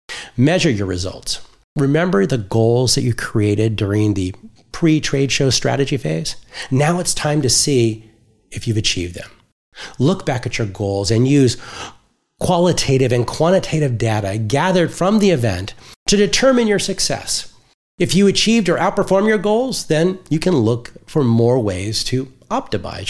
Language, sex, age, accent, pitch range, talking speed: English, male, 30-49, American, 110-175 Hz, 155 wpm